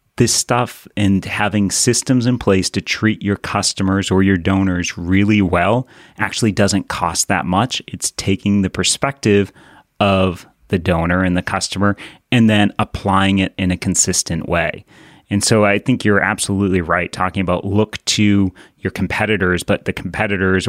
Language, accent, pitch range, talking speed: English, American, 95-115 Hz, 160 wpm